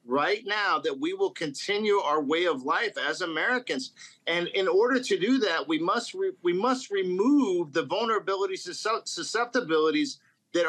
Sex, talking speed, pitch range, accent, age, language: male, 165 wpm, 170-260 Hz, American, 50-69, English